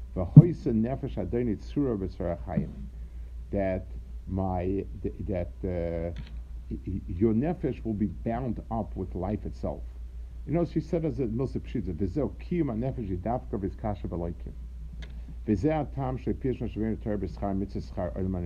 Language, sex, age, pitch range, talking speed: English, male, 50-69, 80-125 Hz, 55 wpm